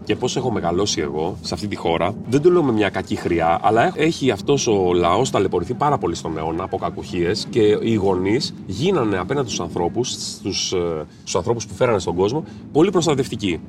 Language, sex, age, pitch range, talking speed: Greek, male, 30-49, 95-155 Hz, 180 wpm